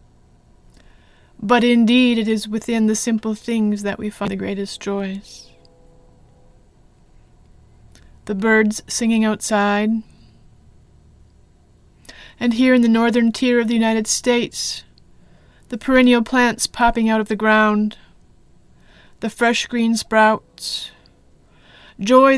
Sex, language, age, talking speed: female, English, 30-49, 110 wpm